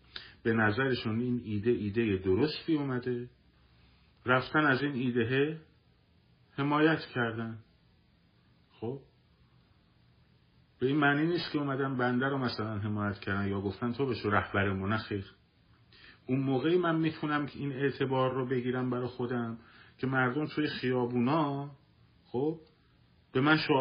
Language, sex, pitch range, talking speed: Persian, male, 110-145 Hz, 125 wpm